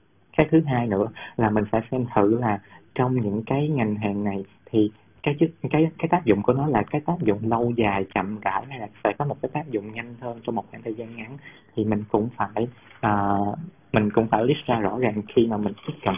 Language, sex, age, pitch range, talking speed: Vietnamese, male, 20-39, 105-125 Hz, 240 wpm